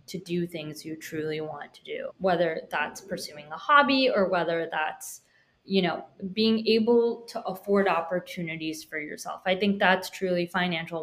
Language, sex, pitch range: English, female, 165-200 Hz